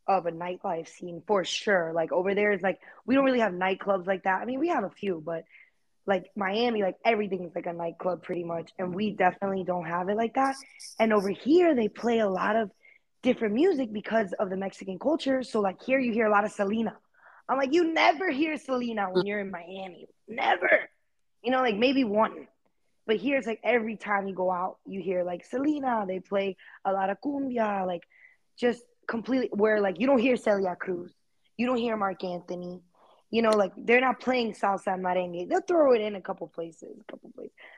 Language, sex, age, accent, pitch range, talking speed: English, female, 20-39, American, 185-240 Hz, 215 wpm